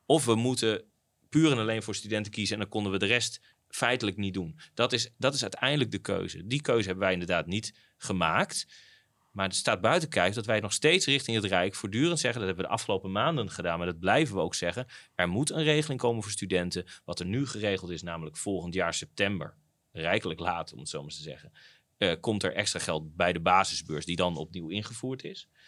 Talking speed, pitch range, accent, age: 230 wpm, 90-120 Hz, Dutch, 30-49